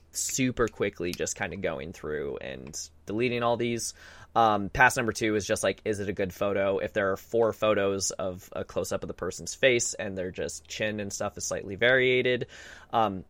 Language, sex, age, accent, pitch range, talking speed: English, male, 20-39, American, 100-120 Hz, 205 wpm